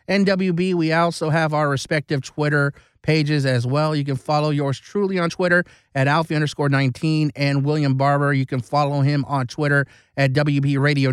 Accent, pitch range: American, 140-180 Hz